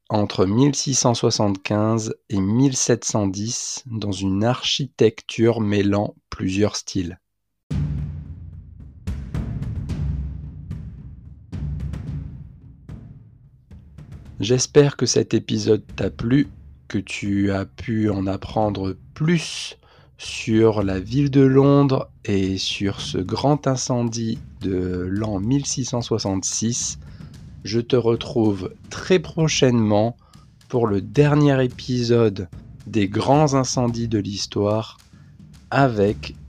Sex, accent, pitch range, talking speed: male, French, 95-125 Hz, 85 wpm